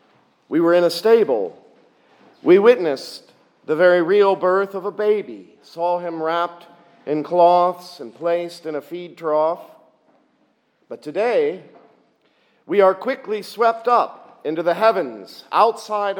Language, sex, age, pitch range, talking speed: English, male, 50-69, 155-210 Hz, 135 wpm